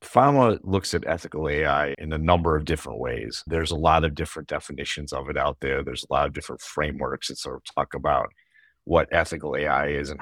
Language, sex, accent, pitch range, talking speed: English, male, American, 75-85 Hz, 215 wpm